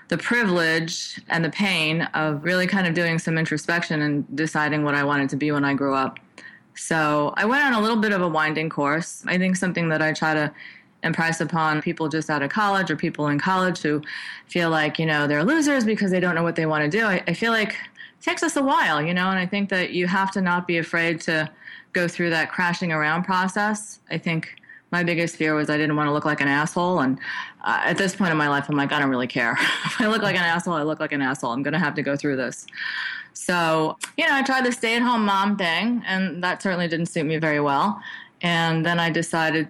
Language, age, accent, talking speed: English, 20-39, American, 250 wpm